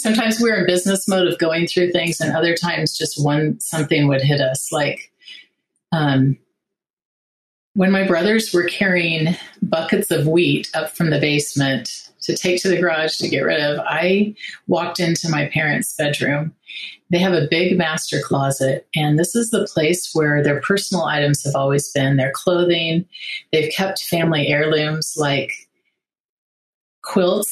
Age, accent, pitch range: 30-49, American, 145-175 Hz